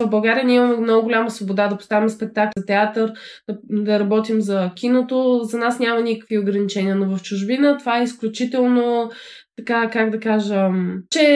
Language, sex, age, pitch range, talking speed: Bulgarian, female, 20-39, 200-230 Hz, 175 wpm